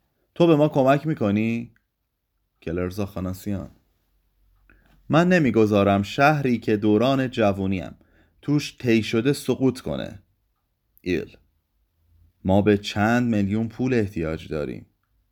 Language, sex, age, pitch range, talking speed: Persian, male, 30-49, 85-110 Hz, 100 wpm